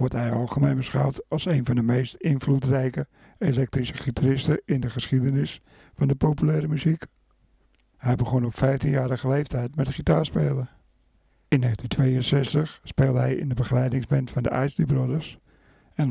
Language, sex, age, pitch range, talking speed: Dutch, male, 60-79, 125-145 Hz, 140 wpm